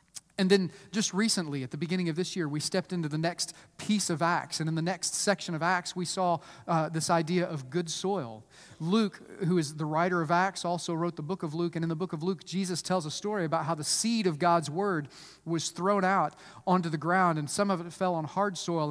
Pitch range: 160-200 Hz